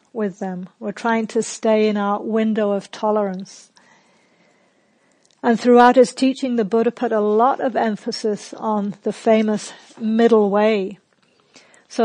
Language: English